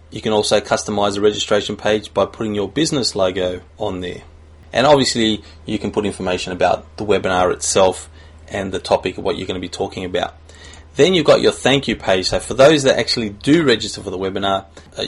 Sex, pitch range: male, 85-110 Hz